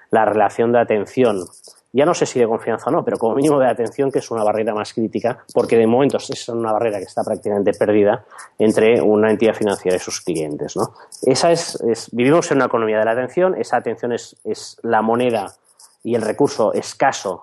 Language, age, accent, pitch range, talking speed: Spanish, 30-49, Spanish, 105-120 Hz, 210 wpm